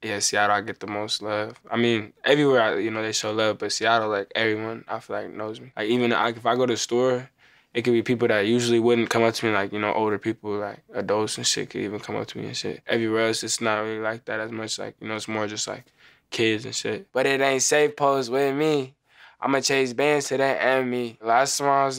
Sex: male